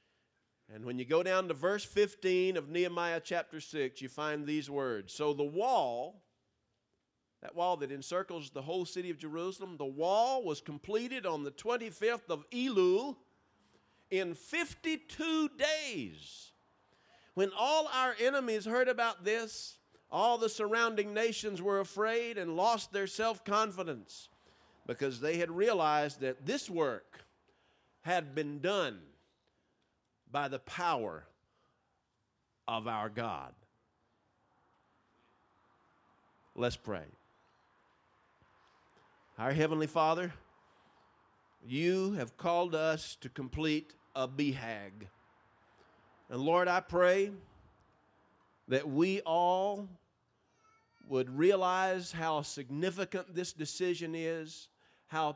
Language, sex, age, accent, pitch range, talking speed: English, male, 50-69, American, 150-200 Hz, 110 wpm